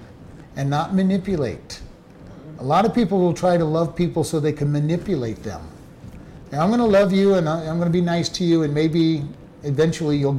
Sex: male